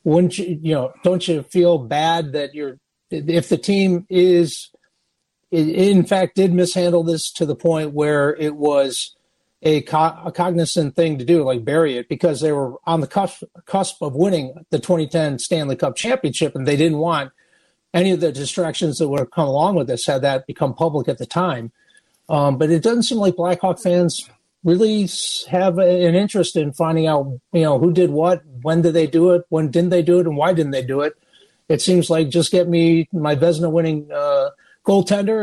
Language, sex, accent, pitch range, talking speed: English, male, American, 155-180 Hz, 205 wpm